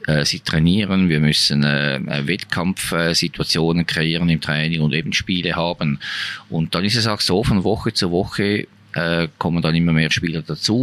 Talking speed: 175 wpm